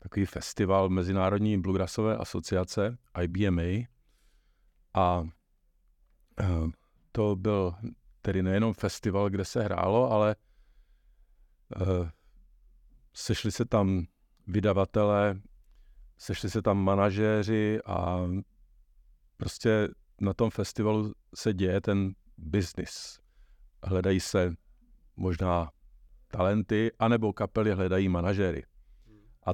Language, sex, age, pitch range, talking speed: Czech, male, 50-69, 90-105 Hz, 85 wpm